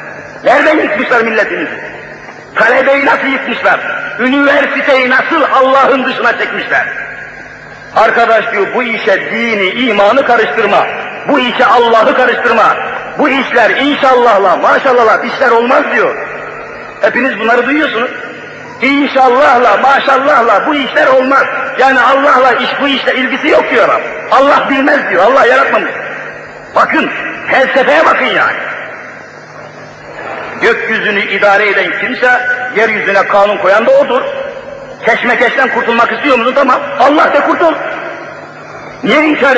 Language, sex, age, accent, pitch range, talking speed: Turkish, male, 50-69, native, 245-300 Hz, 110 wpm